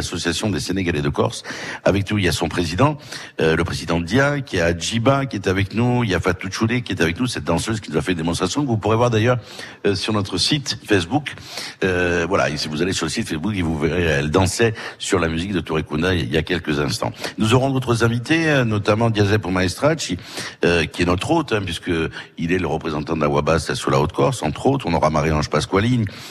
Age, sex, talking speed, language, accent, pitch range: 60-79, male, 235 wpm, French, French, 80-115 Hz